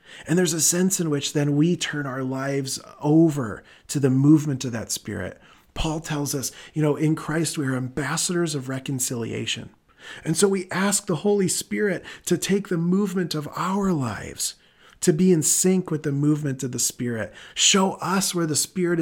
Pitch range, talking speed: 130-170 Hz, 185 wpm